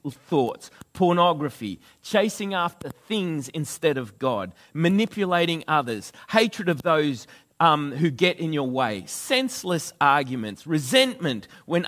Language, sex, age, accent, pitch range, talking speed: English, male, 40-59, Australian, 140-195 Hz, 115 wpm